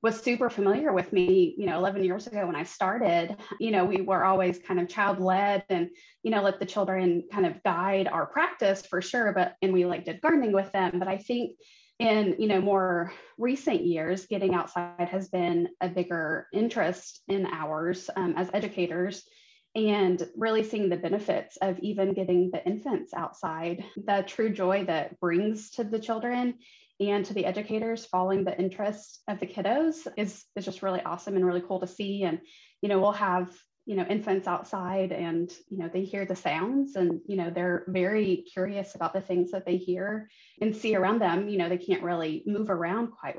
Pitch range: 180-210 Hz